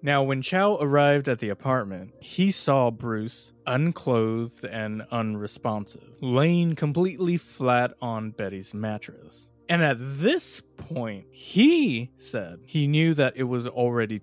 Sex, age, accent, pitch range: male, 20-39, American, 110-140 Hz